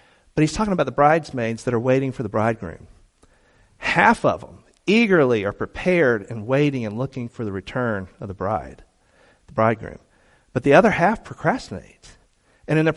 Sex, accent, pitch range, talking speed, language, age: male, American, 150-190 Hz, 175 wpm, English, 40-59